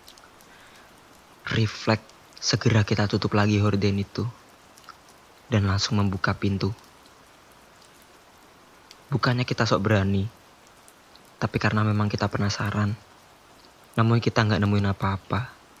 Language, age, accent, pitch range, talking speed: Indonesian, 20-39, native, 100-110 Hz, 95 wpm